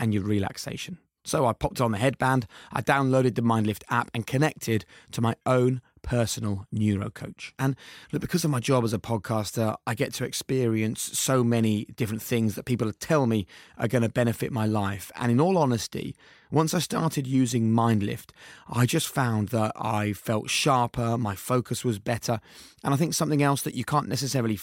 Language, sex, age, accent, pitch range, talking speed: English, male, 30-49, British, 110-135 Hz, 190 wpm